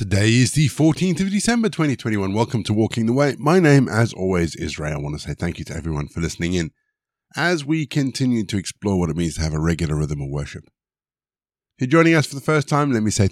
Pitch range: 80-120 Hz